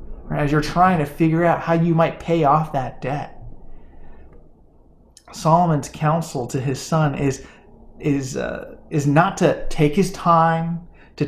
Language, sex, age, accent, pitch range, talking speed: English, male, 20-39, American, 140-165 Hz, 150 wpm